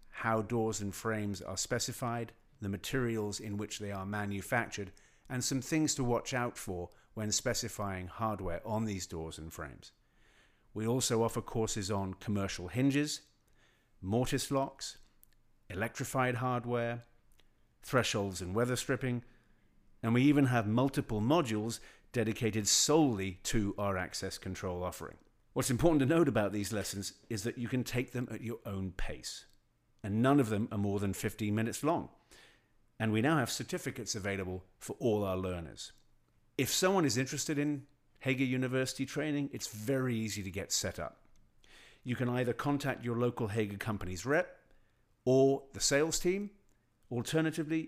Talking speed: 155 wpm